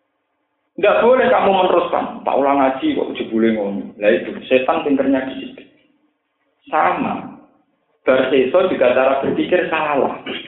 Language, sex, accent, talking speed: Indonesian, male, native, 110 wpm